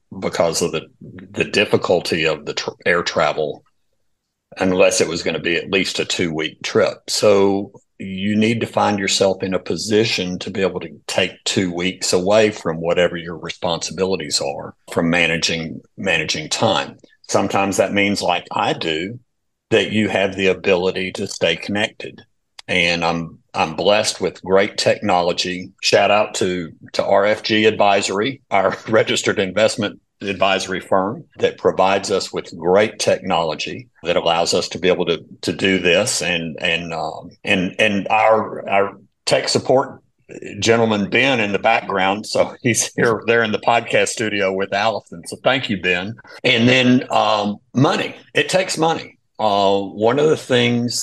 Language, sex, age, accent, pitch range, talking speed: English, male, 50-69, American, 90-110 Hz, 160 wpm